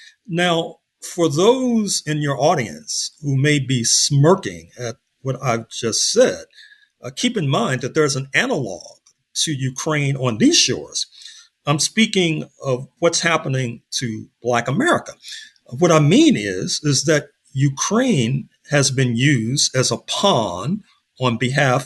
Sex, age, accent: male, 50-69, American